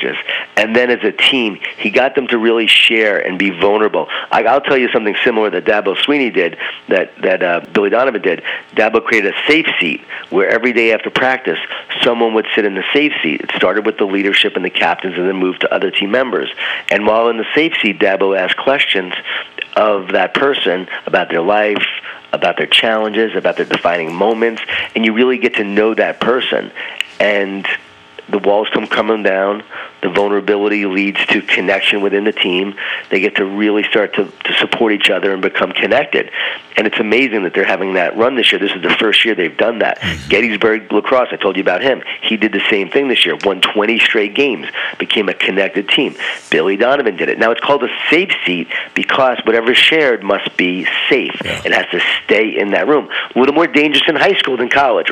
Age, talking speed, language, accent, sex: 40-59, 205 wpm, English, American, male